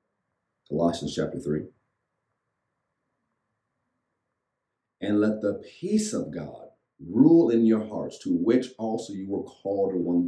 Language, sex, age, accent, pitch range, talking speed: English, male, 50-69, American, 90-120 Hz, 125 wpm